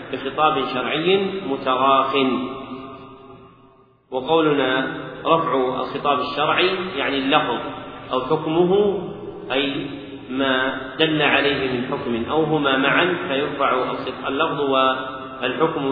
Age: 40-59